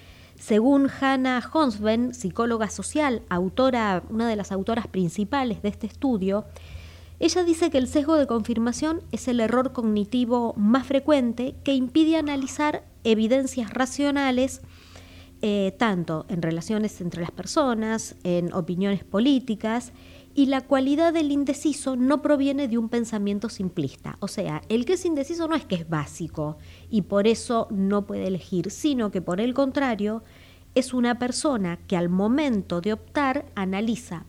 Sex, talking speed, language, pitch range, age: female, 145 wpm, Italian, 180-260 Hz, 30-49